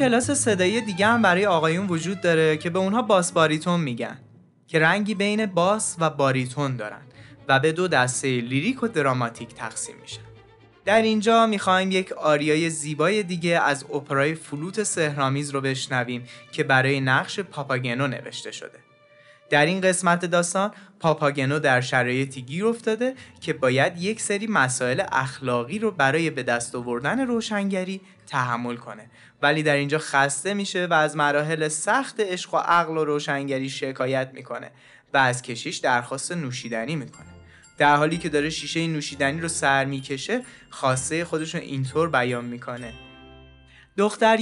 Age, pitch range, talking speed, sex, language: 20-39, 130-180 Hz, 145 wpm, male, Persian